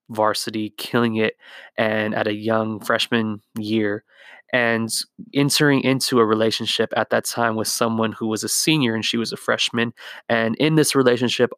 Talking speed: 165 wpm